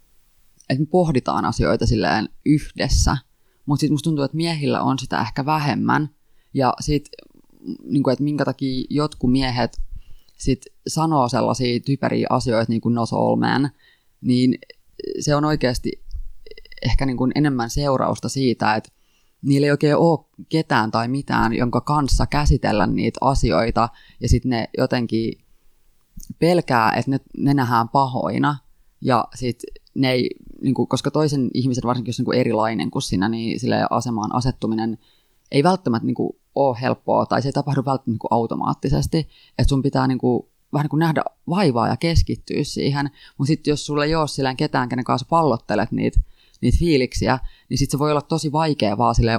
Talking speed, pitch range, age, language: 155 wpm, 120-145 Hz, 20-39, Finnish